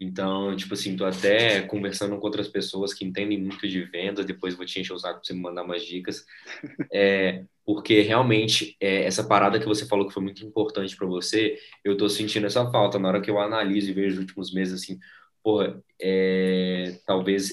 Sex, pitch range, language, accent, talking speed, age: male, 95-110 Hz, Portuguese, Brazilian, 200 wpm, 20-39